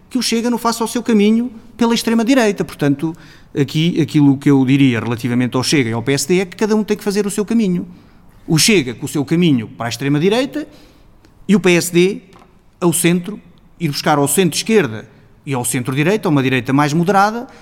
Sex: male